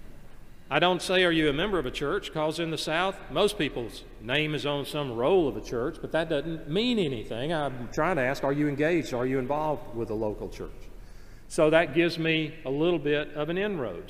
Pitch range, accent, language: 130-170 Hz, American, English